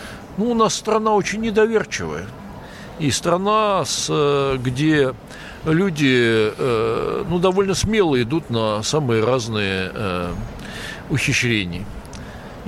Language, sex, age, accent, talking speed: Russian, male, 60-79, native, 95 wpm